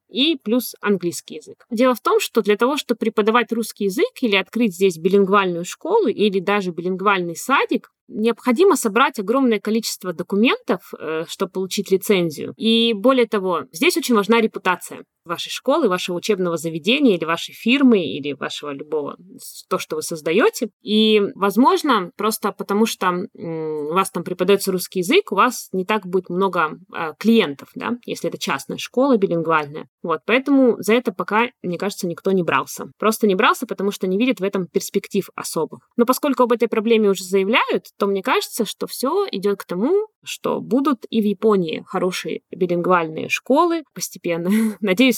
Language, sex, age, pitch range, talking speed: Russian, female, 20-39, 180-235 Hz, 165 wpm